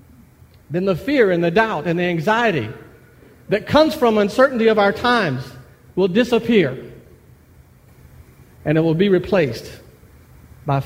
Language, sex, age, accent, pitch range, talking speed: English, male, 50-69, American, 125-190 Hz, 135 wpm